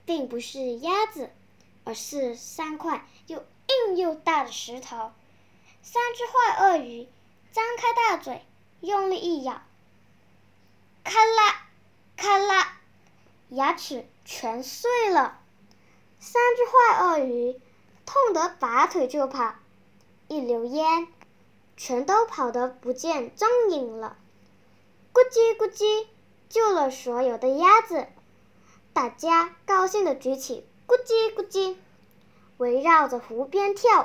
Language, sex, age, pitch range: Chinese, male, 10-29, 250-425 Hz